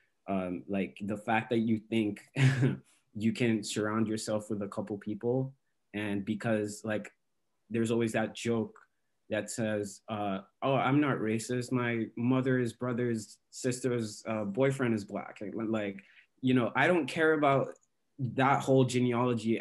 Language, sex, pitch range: English, male, 105-130 Hz